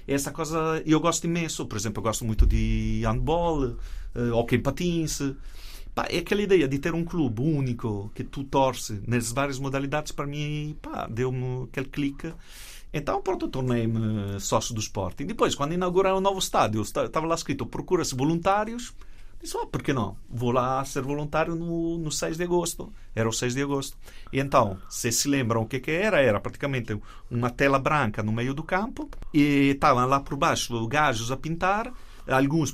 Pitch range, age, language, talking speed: 120-165 Hz, 40-59, Portuguese, 190 wpm